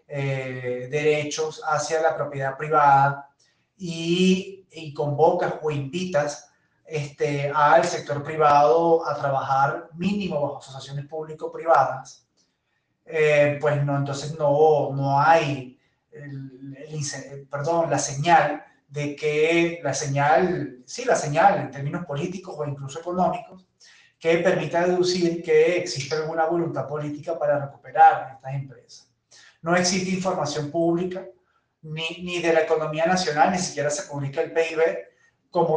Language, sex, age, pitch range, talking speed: Spanish, male, 20-39, 140-170 Hz, 130 wpm